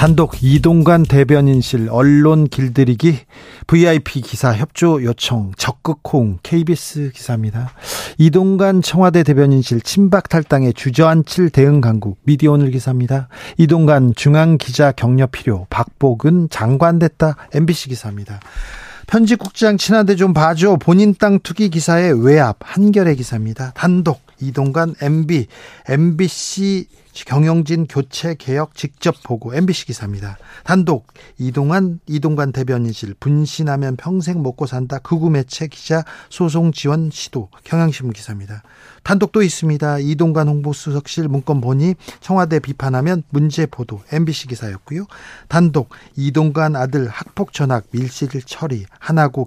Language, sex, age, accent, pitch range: Korean, male, 40-59, native, 130-170 Hz